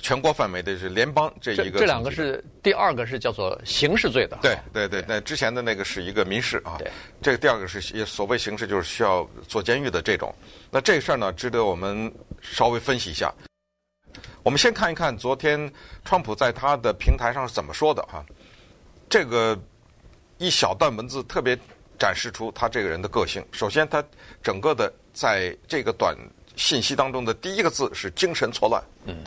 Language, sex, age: Chinese, male, 60-79